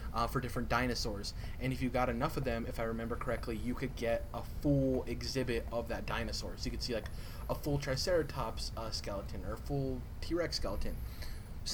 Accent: American